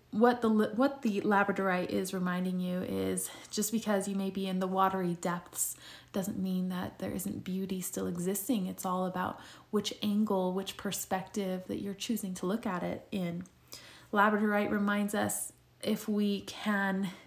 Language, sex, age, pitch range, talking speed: English, female, 20-39, 190-220 Hz, 165 wpm